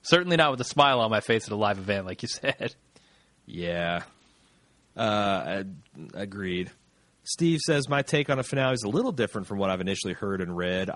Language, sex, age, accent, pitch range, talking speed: English, male, 30-49, American, 100-120 Hz, 205 wpm